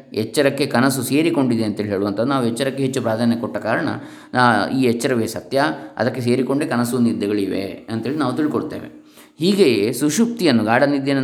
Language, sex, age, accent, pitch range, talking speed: Kannada, male, 20-39, native, 120-150 Hz, 135 wpm